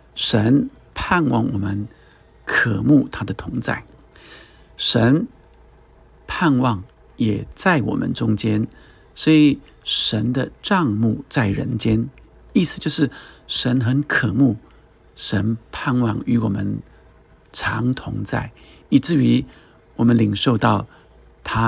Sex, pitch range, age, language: male, 110-135 Hz, 50-69, Chinese